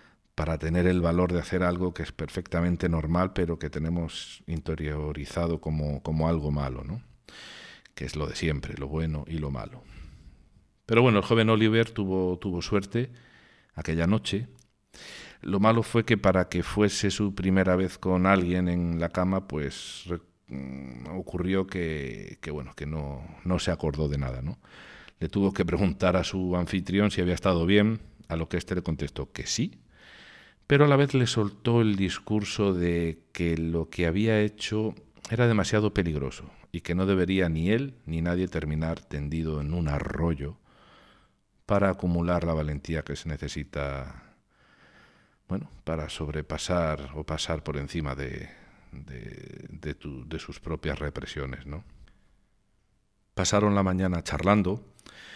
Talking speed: 155 wpm